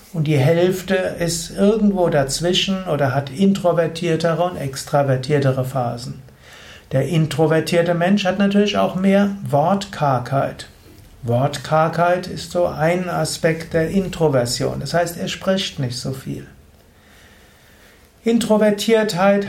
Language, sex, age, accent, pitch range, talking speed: German, male, 60-79, German, 140-185 Hz, 110 wpm